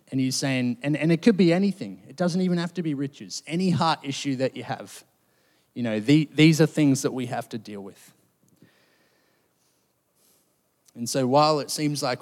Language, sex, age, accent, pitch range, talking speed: English, male, 30-49, Australian, 130-170 Hz, 190 wpm